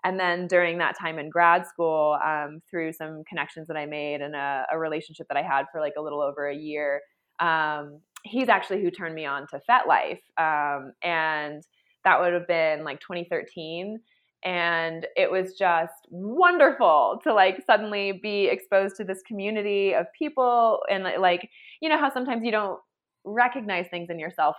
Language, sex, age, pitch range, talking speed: English, female, 20-39, 160-205 Hz, 180 wpm